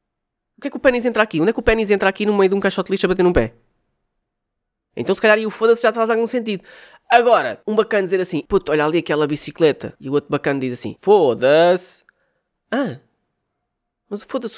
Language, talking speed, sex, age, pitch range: Portuguese, 230 wpm, female, 20-39, 160-255 Hz